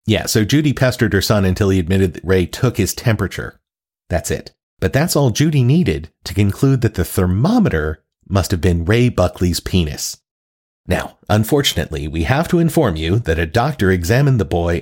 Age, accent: 40-59, American